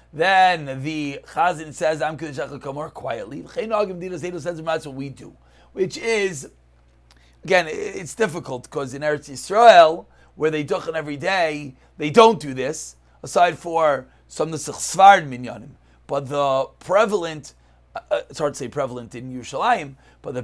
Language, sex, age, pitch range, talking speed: English, male, 30-49, 135-180 Hz, 145 wpm